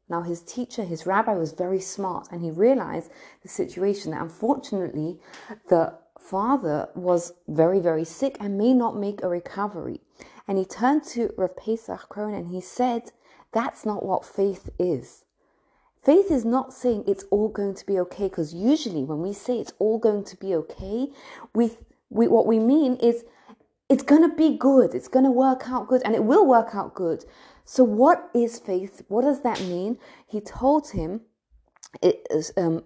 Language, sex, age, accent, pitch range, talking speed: English, female, 30-49, British, 195-255 Hz, 180 wpm